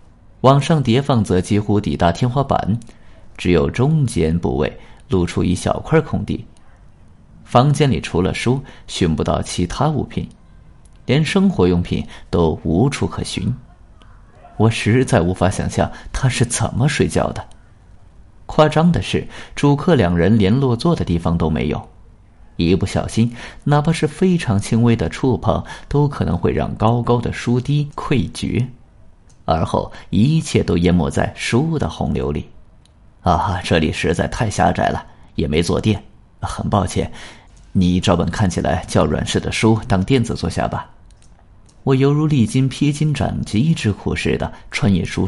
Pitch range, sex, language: 90-125 Hz, male, Chinese